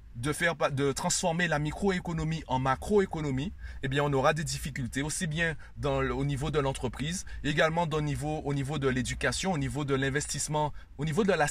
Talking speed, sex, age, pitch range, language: 200 wpm, male, 30-49, 135-175 Hz, French